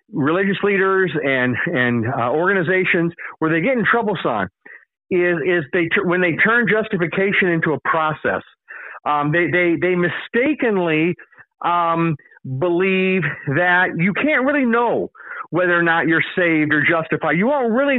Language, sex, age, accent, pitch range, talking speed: English, male, 50-69, American, 165-210 Hz, 150 wpm